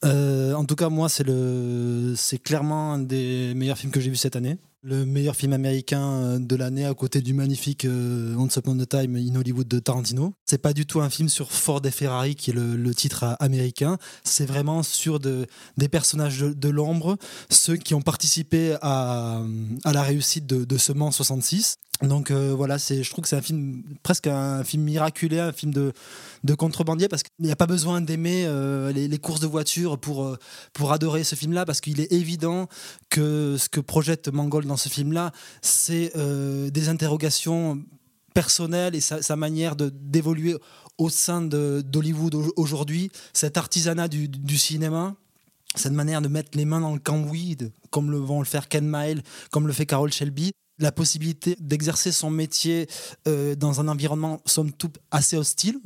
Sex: male